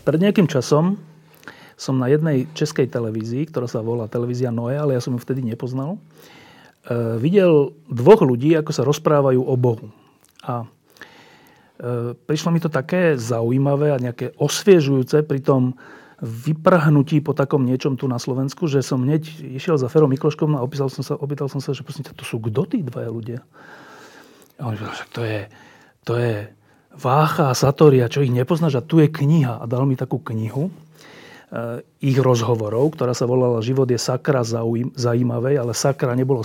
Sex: male